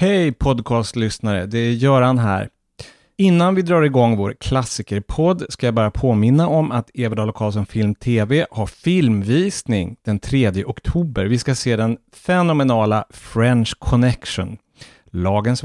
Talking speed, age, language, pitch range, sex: 130 wpm, 30-49, English, 110-145 Hz, male